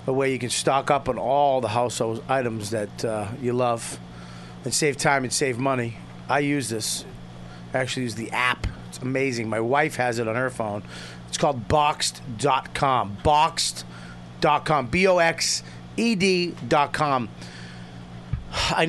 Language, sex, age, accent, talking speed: English, male, 30-49, American, 140 wpm